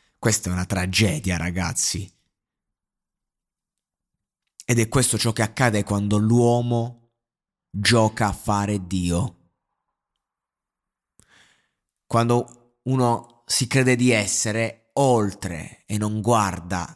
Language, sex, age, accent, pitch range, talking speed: Italian, male, 30-49, native, 95-120 Hz, 95 wpm